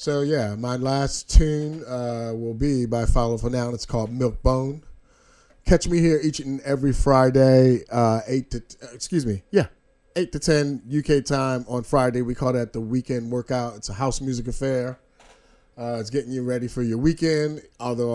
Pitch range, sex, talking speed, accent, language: 115-135 Hz, male, 190 wpm, American, English